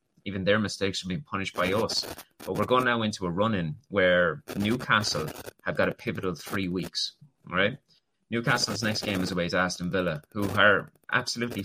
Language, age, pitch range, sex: English, 30-49, 95-120 Hz, male